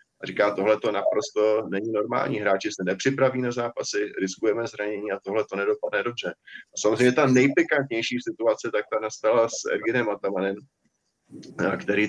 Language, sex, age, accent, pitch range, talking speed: Czech, male, 20-39, native, 95-140 Hz, 155 wpm